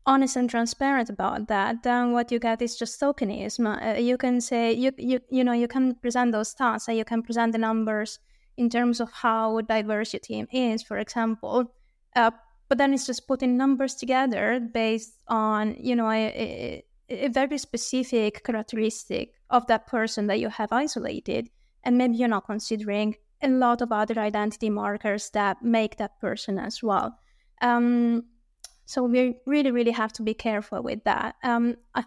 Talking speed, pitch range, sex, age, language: 180 wpm, 220-250 Hz, female, 20-39, English